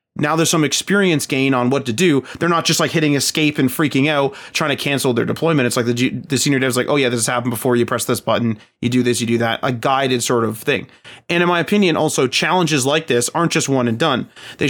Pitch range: 125-160 Hz